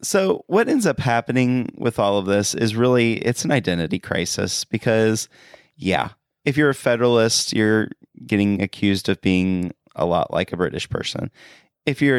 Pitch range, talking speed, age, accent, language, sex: 100-130 Hz, 165 wpm, 30-49, American, English, male